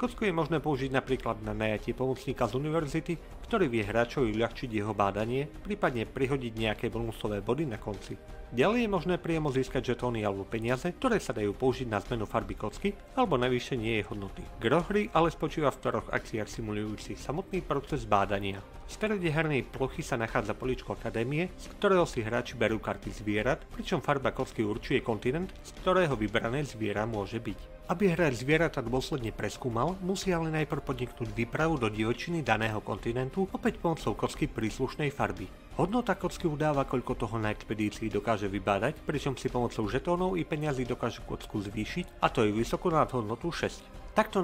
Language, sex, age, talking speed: Slovak, male, 40-59, 165 wpm